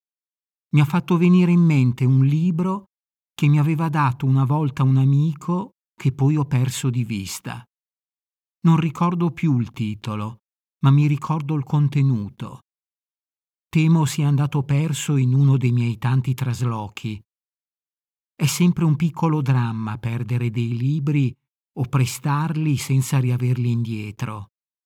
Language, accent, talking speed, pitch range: Italian, native, 135 wpm, 125-150 Hz